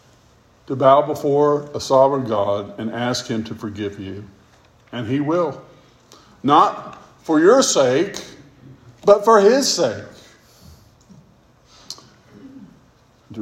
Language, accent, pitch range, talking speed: English, American, 105-125 Hz, 105 wpm